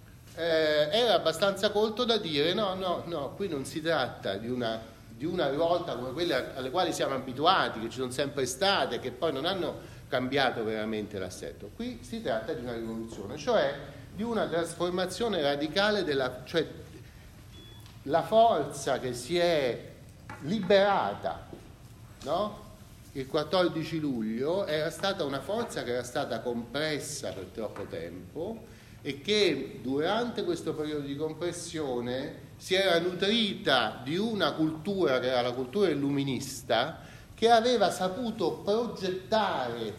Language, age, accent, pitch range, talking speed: Italian, 40-59, native, 125-195 Hz, 140 wpm